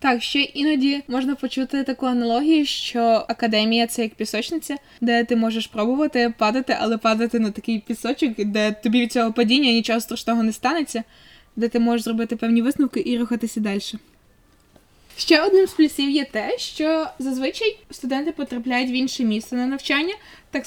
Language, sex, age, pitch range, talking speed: Ukrainian, female, 20-39, 235-285 Hz, 165 wpm